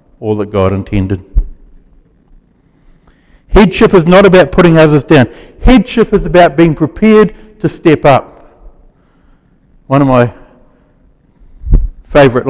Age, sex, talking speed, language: 60-79, male, 110 wpm, English